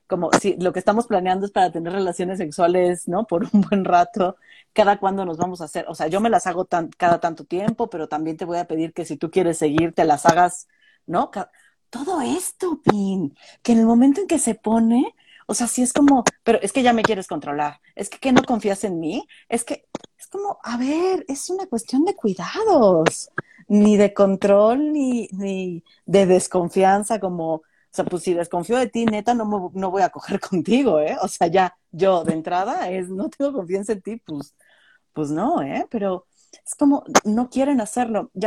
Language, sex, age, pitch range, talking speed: Spanish, female, 40-59, 175-235 Hz, 210 wpm